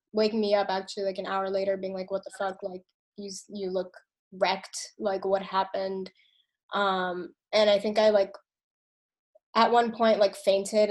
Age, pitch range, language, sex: 10-29, 195-215 Hz, English, female